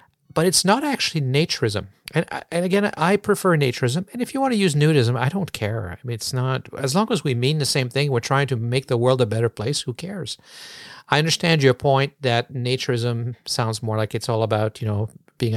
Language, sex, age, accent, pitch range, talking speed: English, male, 50-69, American, 110-145 Hz, 225 wpm